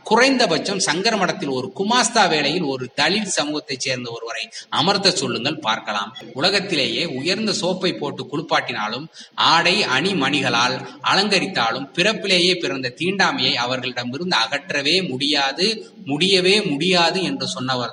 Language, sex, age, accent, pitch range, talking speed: Tamil, male, 20-39, native, 125-175 Hz, 100 wpm